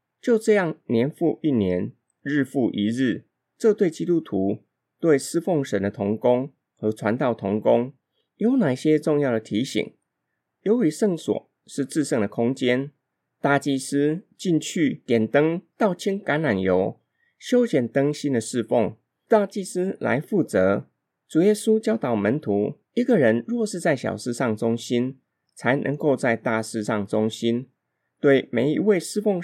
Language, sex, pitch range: Chinese, male, 115-175 Hz